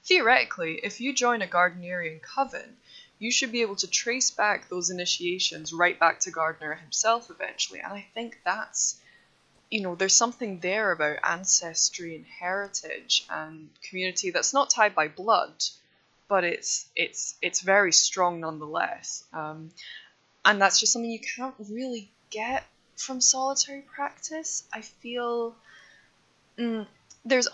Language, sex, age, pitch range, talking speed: English, female, 10-29, 175-235 Hz, 140 wpm